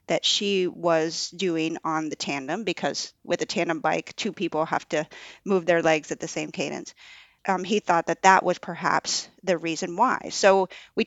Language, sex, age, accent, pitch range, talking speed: English, female, 30-49, American, 165-195 Hz, 190 wpm